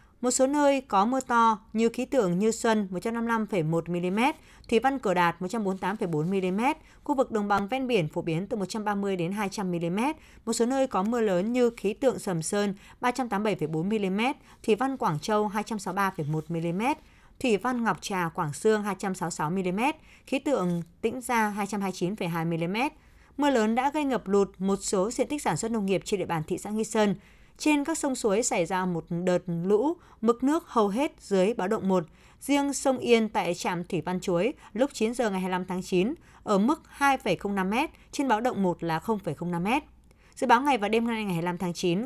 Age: 20-39